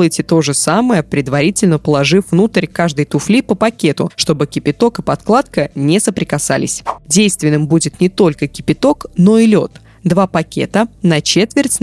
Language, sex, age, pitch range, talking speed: Russian, female, 20-39, 160-215 Hz, 145 wpm